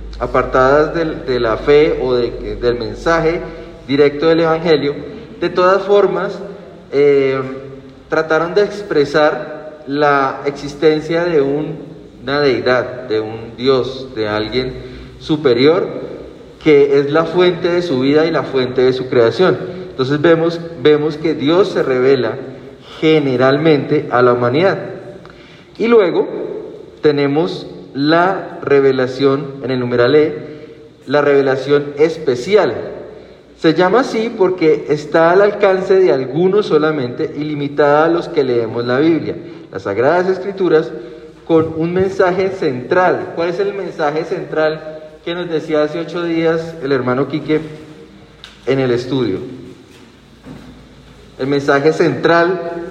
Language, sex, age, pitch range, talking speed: Spanish, male, 40-59, 135-170 Hz, 125 wpm